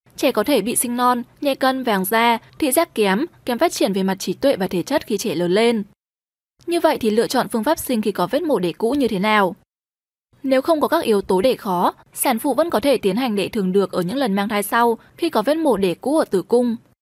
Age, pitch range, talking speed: 10-29, 195-270 Hz, 270 wpm